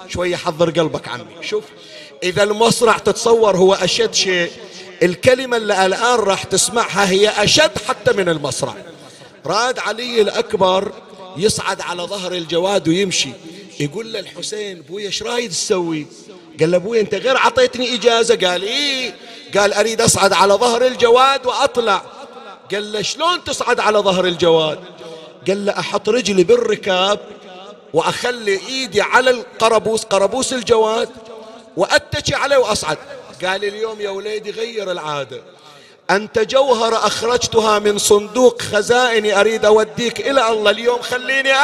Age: 40-59